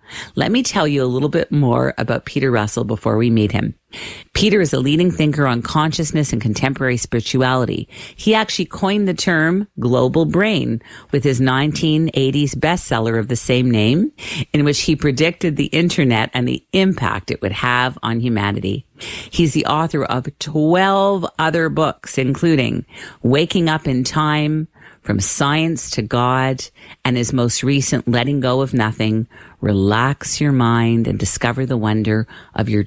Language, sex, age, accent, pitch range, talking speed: English, female, 50-69, American, 120-160 Hz, 160 wpm